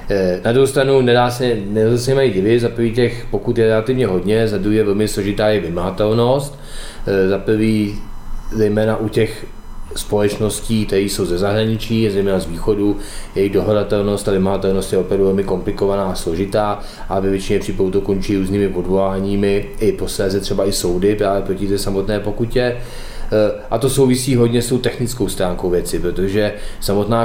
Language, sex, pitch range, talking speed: Czech, male, 95-110 Hz, 155 wpm